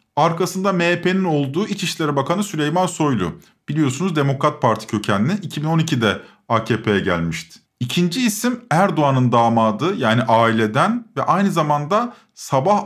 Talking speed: 110 wpm